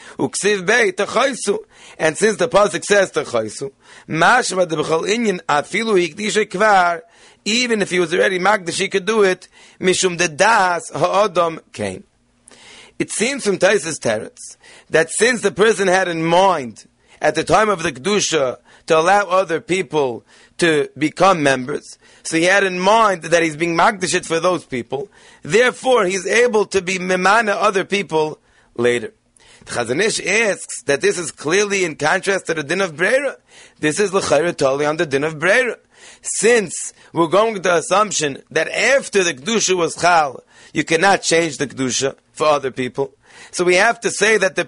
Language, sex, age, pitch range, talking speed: English, male, 30-49, 160-200 Hz, 150 wpm